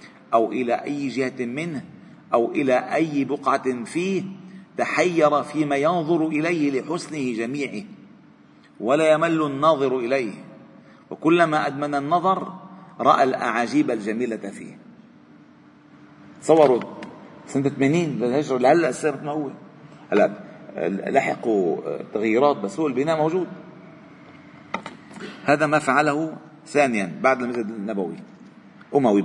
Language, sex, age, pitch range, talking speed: Arabic, male, 40-59, 125-165 Hz, 95 wpm